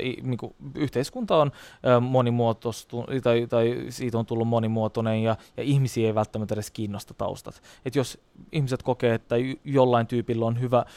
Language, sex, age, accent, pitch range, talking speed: Finnish, male, 20-39, native, 110-150 Hz, 140 wpm